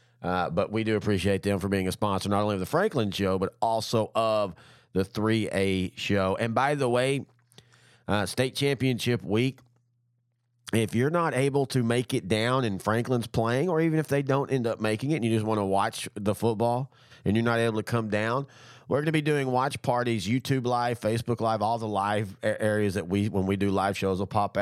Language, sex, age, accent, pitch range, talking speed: English, male, 30-49, American, 95-120 Hz, 220 wpm